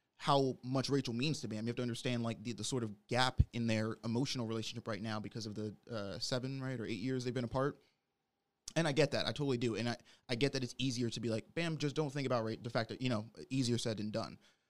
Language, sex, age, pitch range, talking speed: English, male, 20-39, 115-135 Hz, 270 wpm